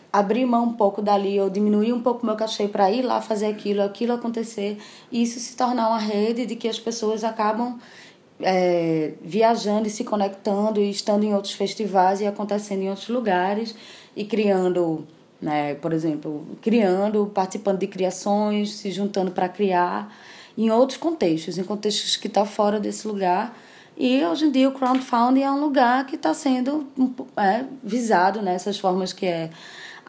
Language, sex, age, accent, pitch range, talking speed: Portuguese, female, 20-39, Brazilian, 185-230 Hz, 180 wpm